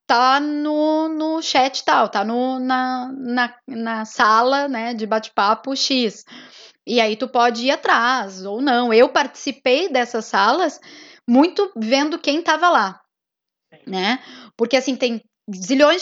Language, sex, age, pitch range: Portuguese, female, 10-29, 235-285 Hz